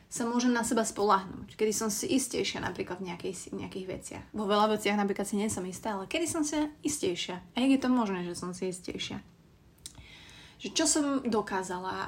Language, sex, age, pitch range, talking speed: Slovak, female, 20-39, 195-225 Hz, 195 wpm